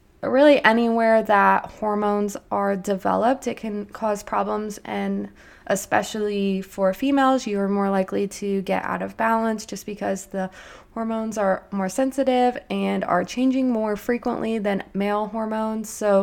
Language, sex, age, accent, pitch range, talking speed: English, female, 20-39, American, 195-225 Hz, 145 wpm